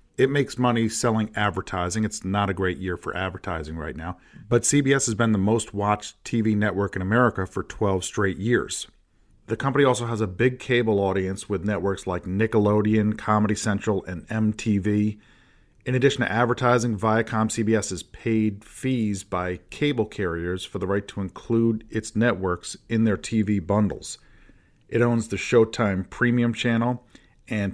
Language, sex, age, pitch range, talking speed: English, male, 40-59, 100-120 Hz, 160 wpm